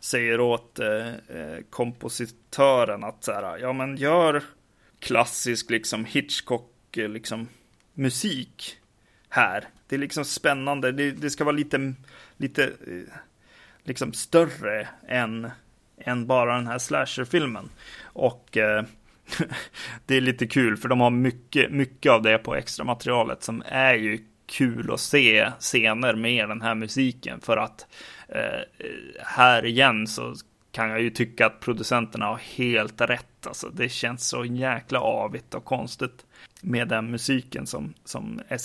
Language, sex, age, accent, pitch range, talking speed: Swedish, male, 30-49, native, 115-130 Hz, 140 wpm